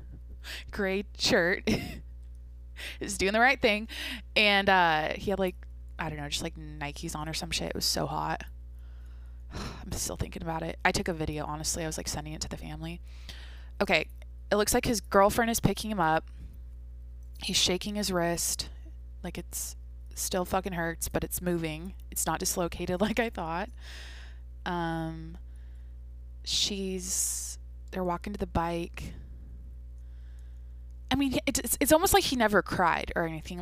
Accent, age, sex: American, 20-39, female